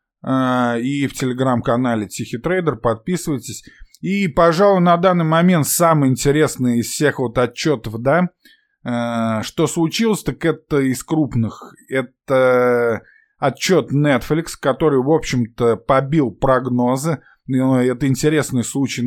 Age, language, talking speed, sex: 20-39, Russian, 115 wpm, male